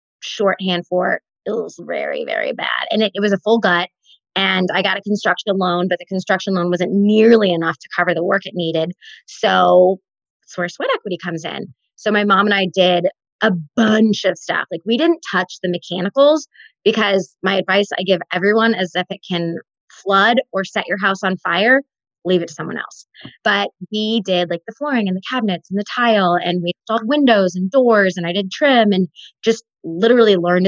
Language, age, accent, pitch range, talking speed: English, 20-39, American, 180-215 Hz, 205 wpm